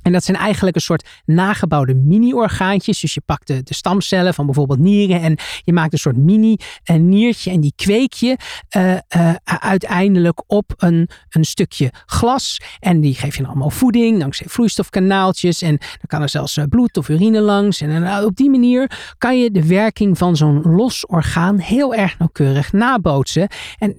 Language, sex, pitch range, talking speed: Dutch, male, 150-195 Hz, 180 wpm